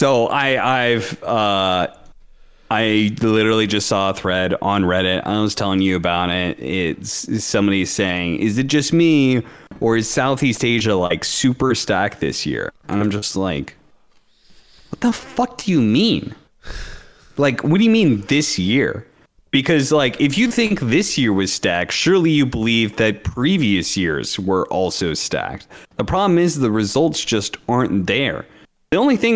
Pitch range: 95-135 Hz